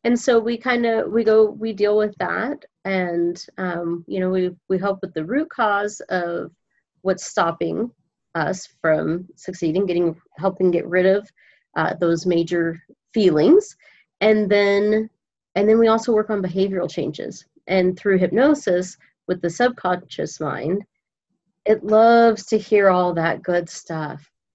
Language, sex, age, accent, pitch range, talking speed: English, female, 30-49, American, 175-215 Hz, 150 wpm